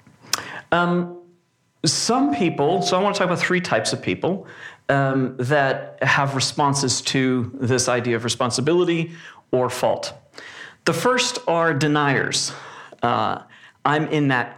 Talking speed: 130 wpm